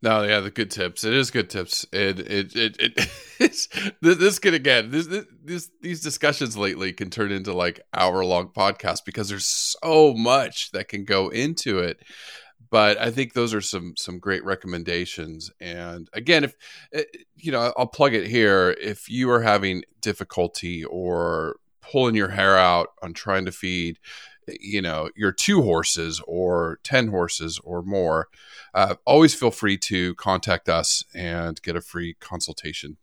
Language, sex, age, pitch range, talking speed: English, male, 30-49, 90-135 Hz, 170 wpm